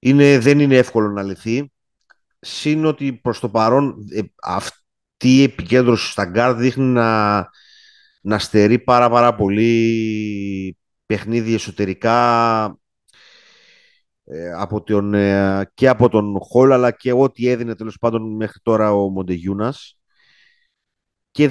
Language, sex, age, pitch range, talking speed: Greek, male, 30-49, 105-130 Hz, 125 wpm